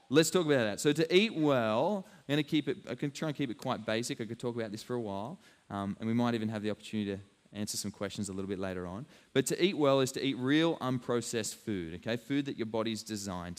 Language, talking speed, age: English, 255 wpm, 20-39